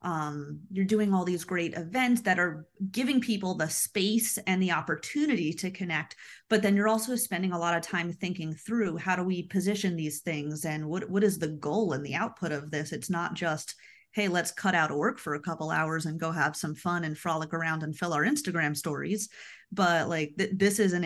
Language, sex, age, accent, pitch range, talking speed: English, female, 30-49, American, 165-210 Hz, 220 wpm